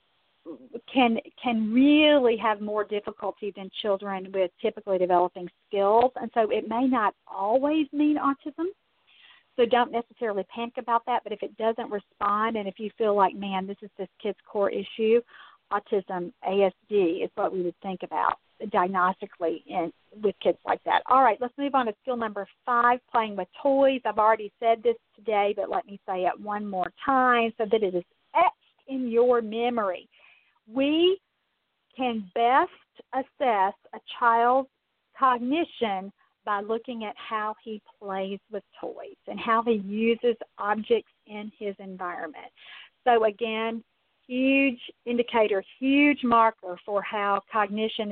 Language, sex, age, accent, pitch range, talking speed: English, female, 50-69, American, 200-255 Hz, 150 wpm